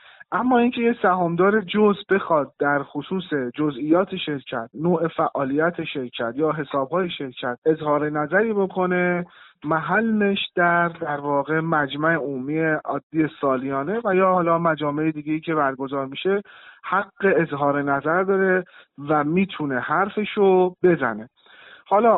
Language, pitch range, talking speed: Persian, 155-195 Hz, 120 wpm